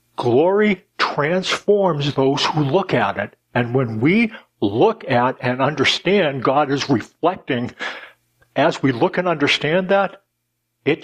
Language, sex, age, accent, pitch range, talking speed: English, male, 60-79, American, 125-175 Hz, 130 wpm